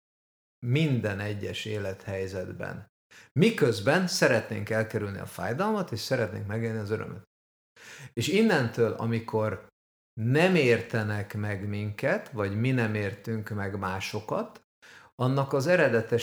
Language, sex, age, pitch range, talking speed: Hungarian, male, 50-69, 105-120 Hz, 105 wpm